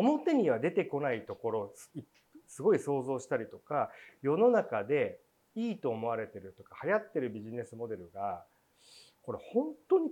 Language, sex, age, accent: Japanese, male, 40-59, native